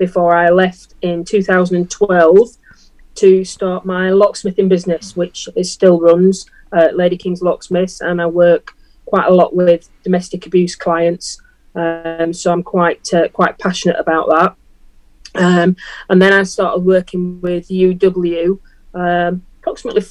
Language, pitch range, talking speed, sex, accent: English, 175-190 Hz, 140 wpm, female, British